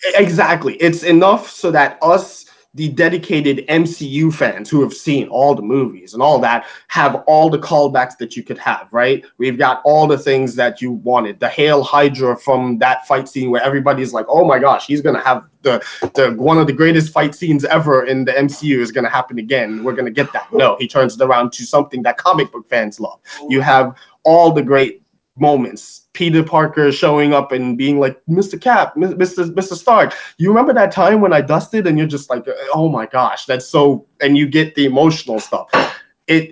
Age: 20-39